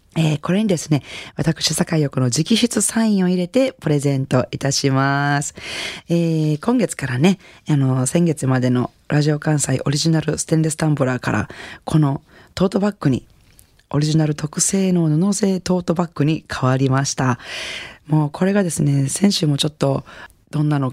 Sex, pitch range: female, 130-175 Hz